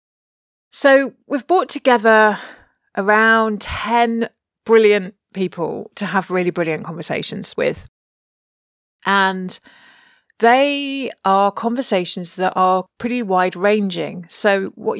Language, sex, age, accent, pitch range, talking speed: English, female, 30-49, British, 180-235 Hz, 100 wpm